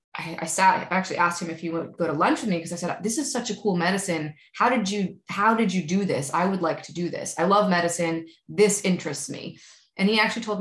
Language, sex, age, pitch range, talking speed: English, female, 20-39, 165-225 Hz, 265 wpm